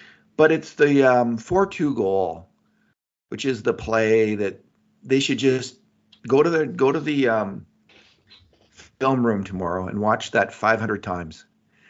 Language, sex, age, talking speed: English, male, 40-59, 145 wpm